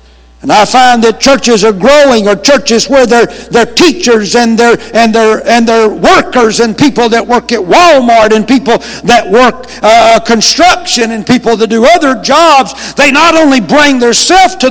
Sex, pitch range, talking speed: male, 210-280 Hz, 180 wpm